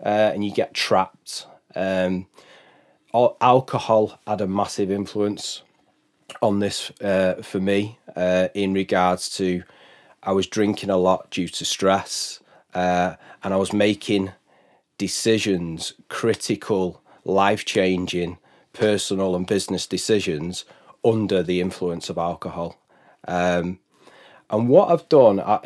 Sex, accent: male, British